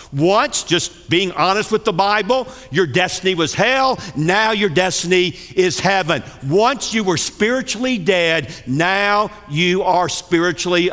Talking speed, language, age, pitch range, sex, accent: 135 wpm, English, 50-69, 165-215 Hz, male, American